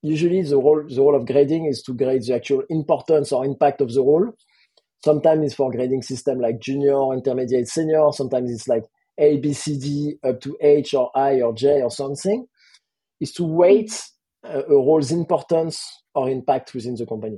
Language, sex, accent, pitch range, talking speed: English, male, French, 130-155 Hz, 185 wpm